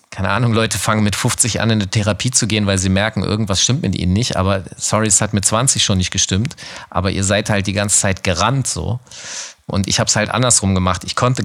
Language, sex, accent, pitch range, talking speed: German, male, German, 100-120 Hz, 245 wpm